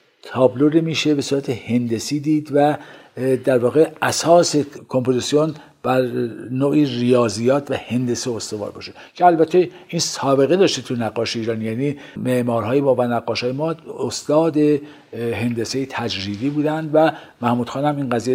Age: 50-69